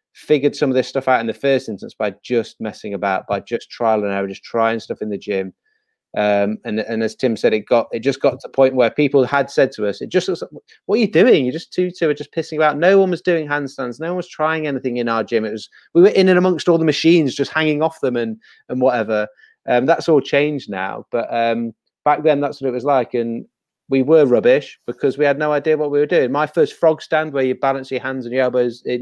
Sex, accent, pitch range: male, British, 115-155 Hz